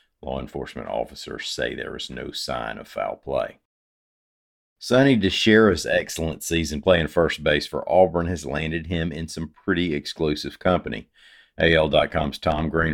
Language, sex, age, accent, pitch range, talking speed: English, male, 50-69, American, 70-90 Hz, 145 wpm